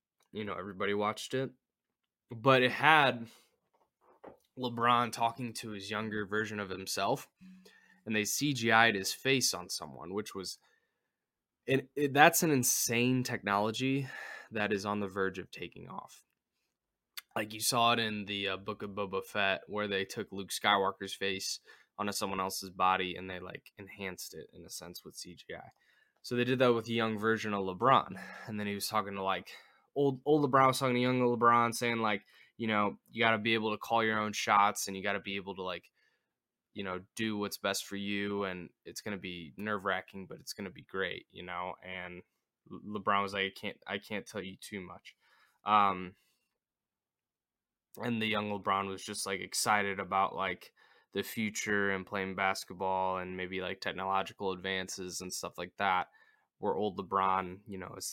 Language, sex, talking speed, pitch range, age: English, male, 190 wpm, 95-115 Hz, 10-29